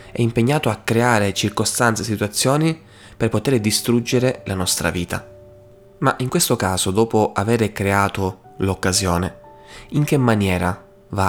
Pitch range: 95-120 Hz